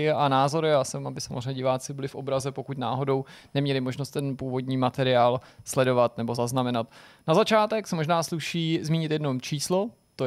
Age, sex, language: 20-39, male, Czech